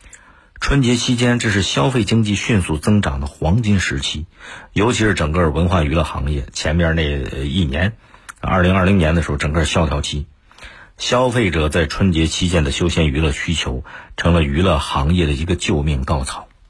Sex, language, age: male, Chinese, 50-69